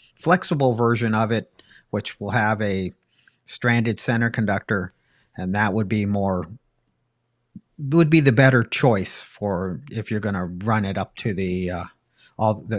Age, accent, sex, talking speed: 50-69, American, male, 155 wpm